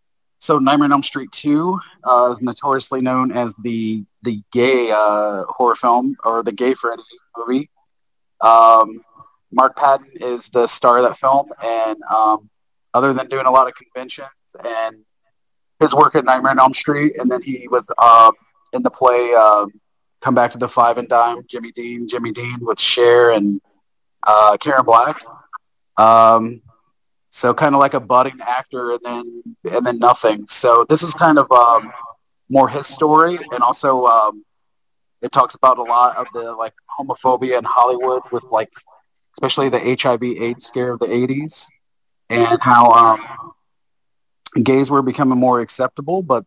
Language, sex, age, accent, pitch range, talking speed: English, male, 30-49, American, 115-130 Hz, 170 wpm